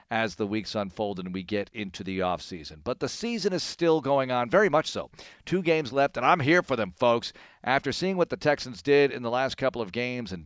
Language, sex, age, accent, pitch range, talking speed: English, male, 50-69, American, 110-145 Hz, 240 wpm